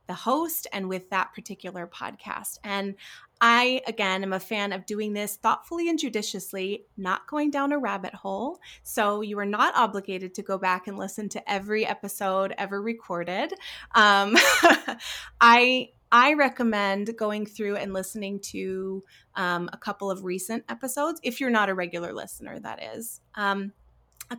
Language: English